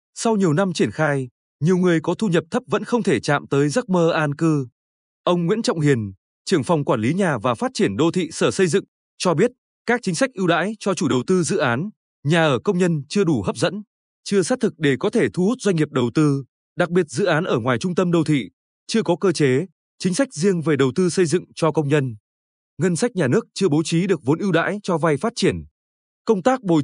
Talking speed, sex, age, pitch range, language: 255 wpm, male, 20-39, 150-195 Hz, Vietnamese